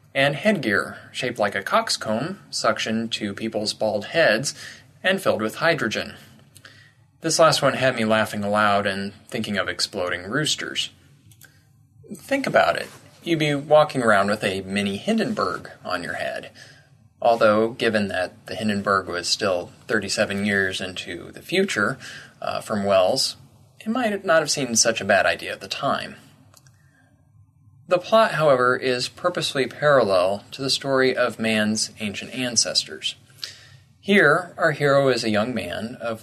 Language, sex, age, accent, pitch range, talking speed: English, male, 20-39, American, 110-135 Hz, 145 wpm